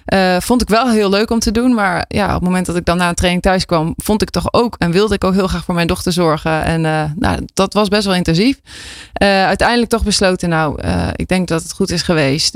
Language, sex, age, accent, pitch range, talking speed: Dutch, female, 20-39, Dutch, 165-205 Hz, 270 wpm